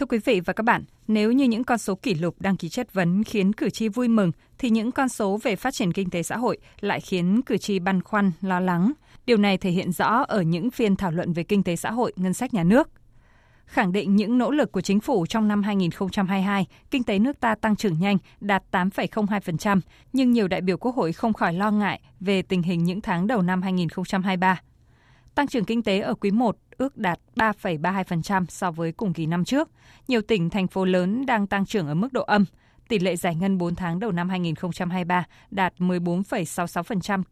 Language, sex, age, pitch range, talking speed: Vietnamese, female, 20-39, 180-220 Hz, 220 wpm